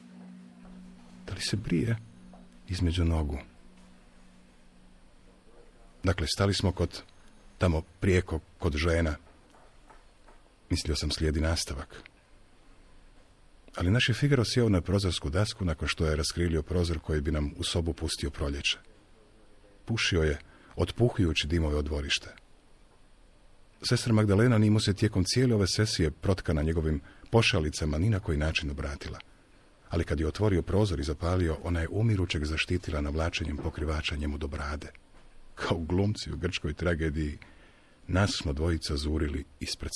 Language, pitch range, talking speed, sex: Croatian, 75-95 Hz, 130 wpm, male